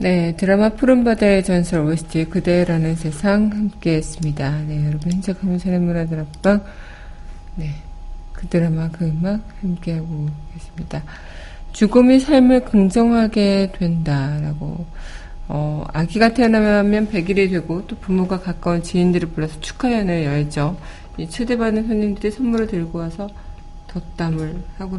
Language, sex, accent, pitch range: Korean, female, native, 150-200 Hz